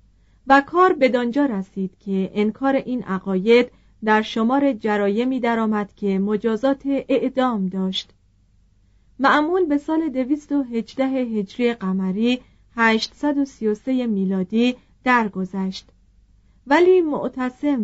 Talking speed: 90 wpm